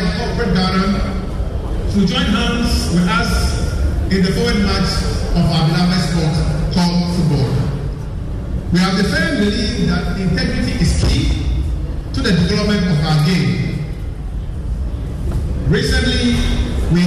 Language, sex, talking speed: English, male, 120 wpm